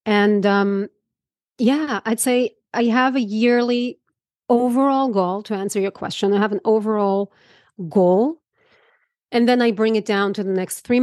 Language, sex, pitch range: English, female, 190-235 Hz